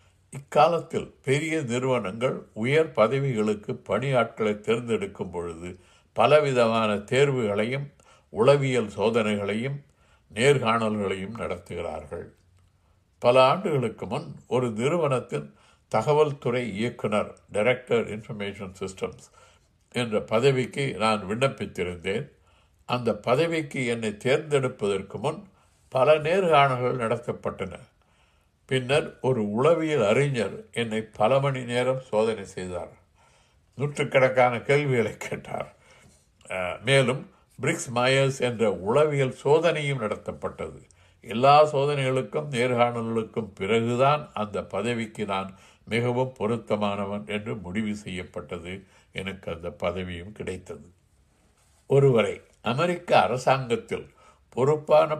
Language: Tamil